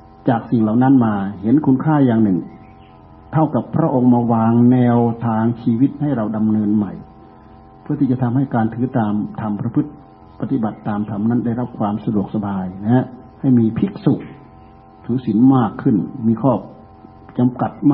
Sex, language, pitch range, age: male, Thai, 110-130 Hz, 60-79